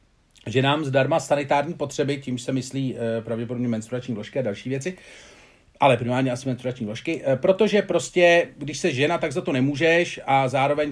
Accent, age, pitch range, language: native, 40-59, 125-145 Hz, Czech